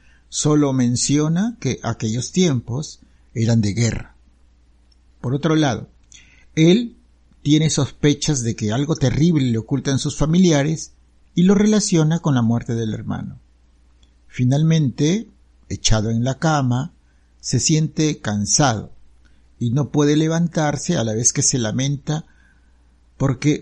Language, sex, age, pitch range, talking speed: Spanish, male, 60-79, 105-150 Hz, 125 wpm